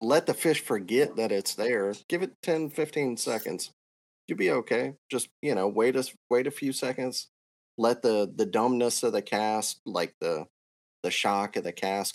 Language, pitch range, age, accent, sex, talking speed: English, 95-120 Hz, 30-49, American, male, 190 wpm